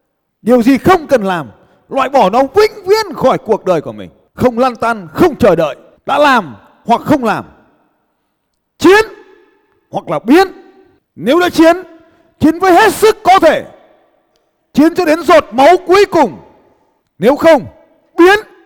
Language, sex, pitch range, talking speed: Vietnamese, male, 195-320 Hz, 160 wpm